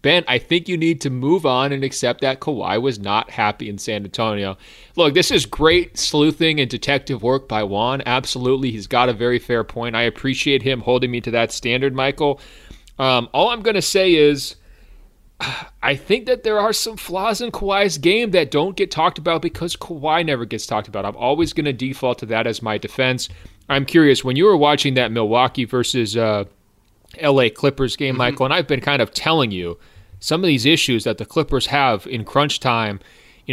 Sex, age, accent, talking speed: male, 30-49, American, 205 wpm